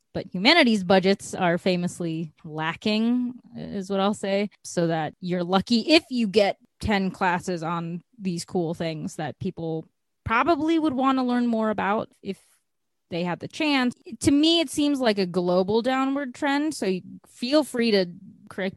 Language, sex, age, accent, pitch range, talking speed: English, female, 20-39, American, 175-235 Hz, 165 wpm